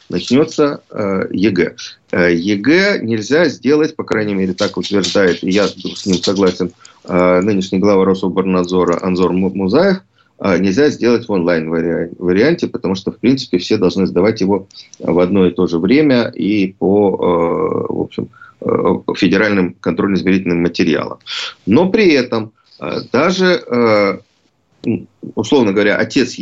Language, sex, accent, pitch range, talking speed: Russian, male, native, 95-120 Hz, 120 wpm